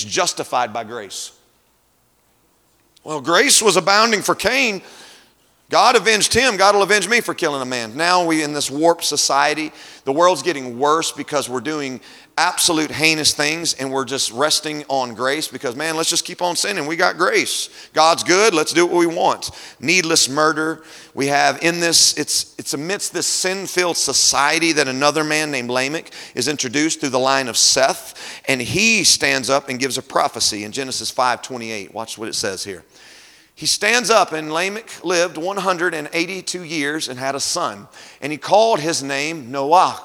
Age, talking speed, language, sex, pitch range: 40-59, 175 wpm, English, male, 135-170 Hz